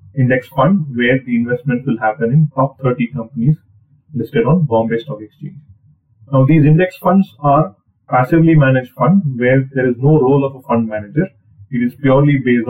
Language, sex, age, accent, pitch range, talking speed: English, male, 30-49, Indian, 120-150 Hz, 175 wpm